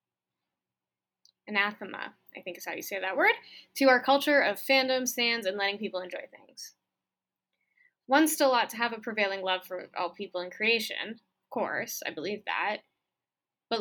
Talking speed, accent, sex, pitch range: 170 wpm, American, female, 195-265 Hz